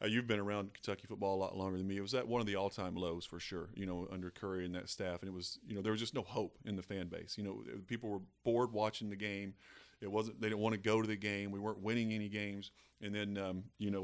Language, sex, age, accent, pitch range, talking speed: English, male, 30-49, American, 100-110 Hz, 295 wpm